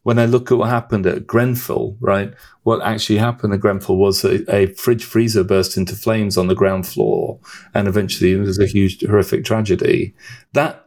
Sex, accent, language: male, British, English